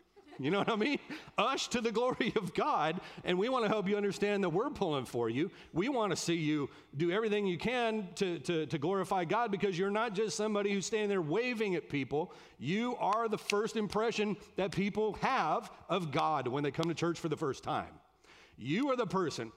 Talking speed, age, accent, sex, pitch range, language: 215 wpm, 40-59, American, male, 165-225 Hz, English